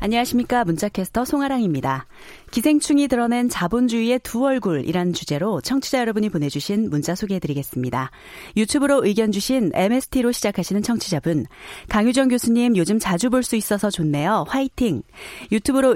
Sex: female